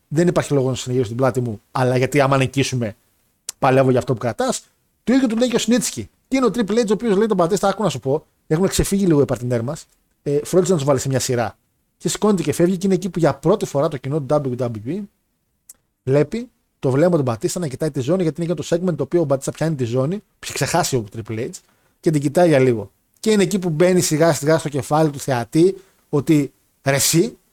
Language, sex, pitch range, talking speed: Greek, male, 135-190 Hz, 235 wpm